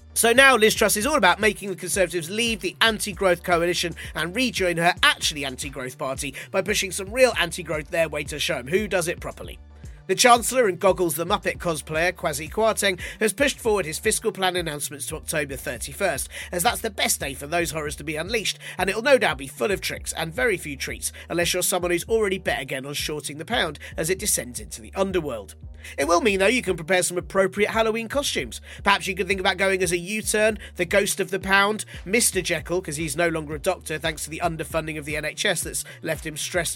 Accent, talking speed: British, 225 wpm